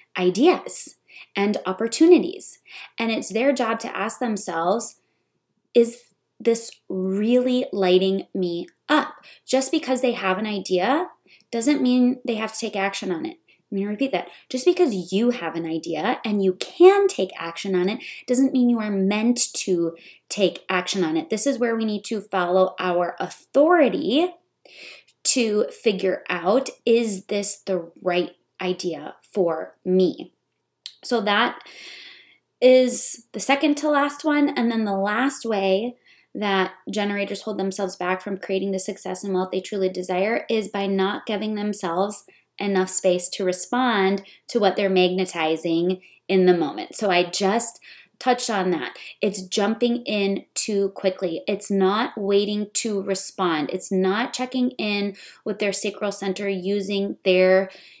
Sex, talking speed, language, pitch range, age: female, 150 wpm, English, 185-240 Hz, 20-39